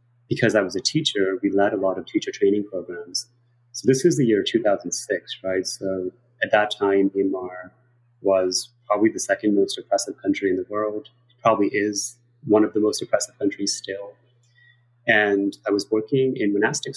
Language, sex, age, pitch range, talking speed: English, male, 30-49, 100-120 Hz, 180 wpm